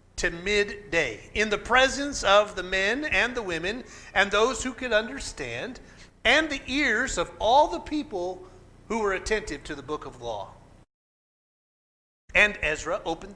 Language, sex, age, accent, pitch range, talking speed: English, male, 40-59, American, 180-275 Hz, 155 wpm